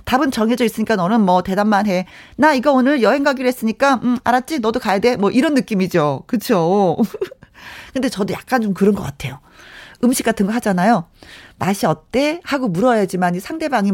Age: 40-59